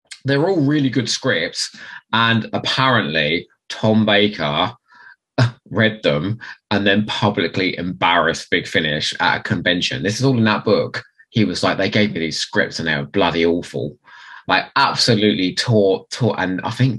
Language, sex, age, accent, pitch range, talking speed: English, male, 20-39, British, 90-125 Hz, 165 wpm